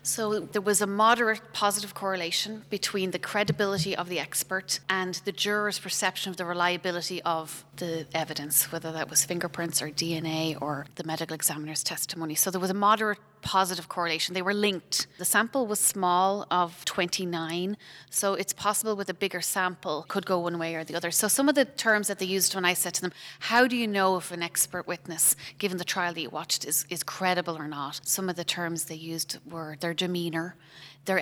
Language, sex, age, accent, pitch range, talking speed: English, female, 30-49, Irish, 165-190 Hz, 205 wpm